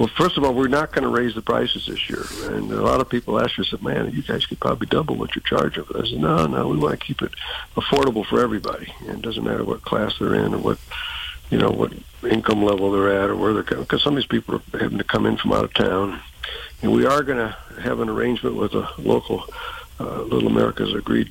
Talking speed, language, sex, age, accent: 260 wpm, English, male, 60-79, American